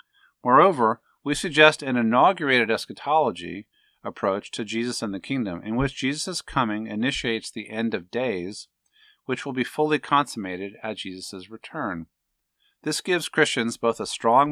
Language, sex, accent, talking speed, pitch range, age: English, male, American, 145 wpm, 105-140 Hz, 50-69